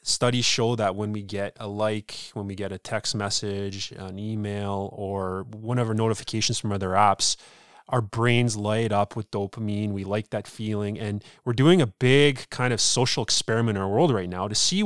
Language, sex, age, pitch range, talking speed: English, male, 20-39, 100-125 Hz, 195 wpm